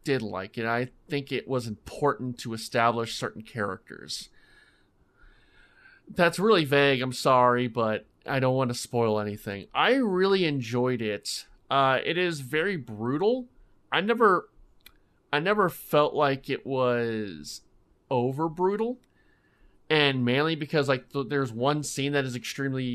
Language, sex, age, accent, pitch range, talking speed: English, male, 30-49, American, 115-140 Hz, 140 wpm